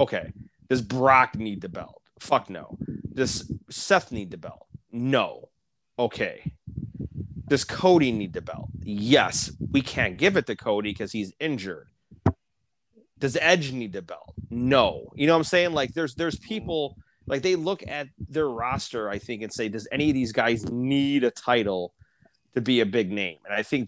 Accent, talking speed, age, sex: American, 180 wpm, 30-49, male